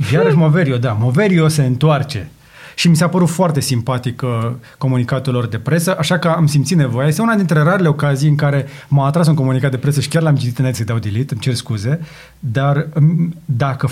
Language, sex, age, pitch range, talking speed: Romanian, male, 30-49, 130-170 Hz, 205 wpm